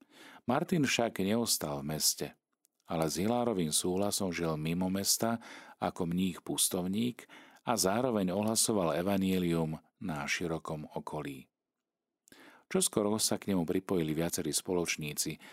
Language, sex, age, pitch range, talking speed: Slovak, male, 40-59, 80-105 Hz, 110 wpm